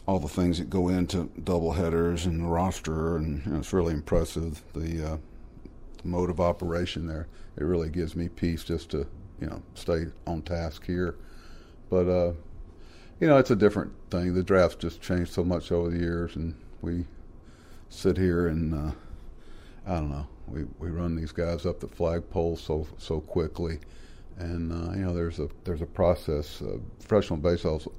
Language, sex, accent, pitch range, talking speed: English, male, American, 80-85 Hz, 180 wpm